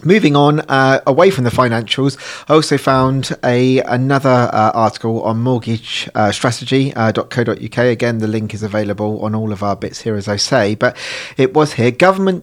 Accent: British